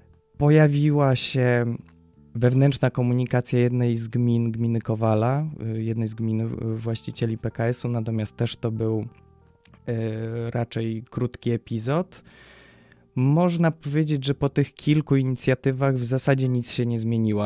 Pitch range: 110-125 Hz